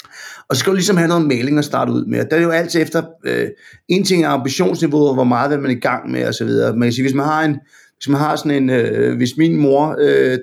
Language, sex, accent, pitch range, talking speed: Danish, male, native, 135-175 Hz, 265 wpm